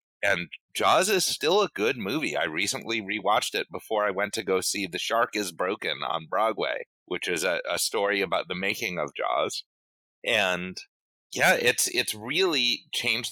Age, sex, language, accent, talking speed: 30-49, male, English, American, 175 wpm